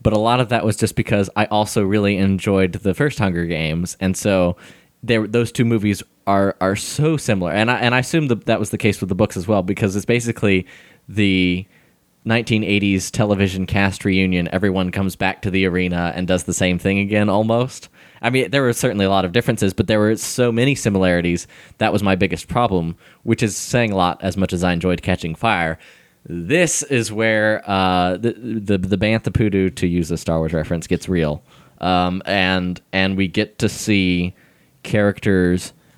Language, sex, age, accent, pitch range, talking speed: English, male, 20-39, American, 90-110 Hz, 195 wpm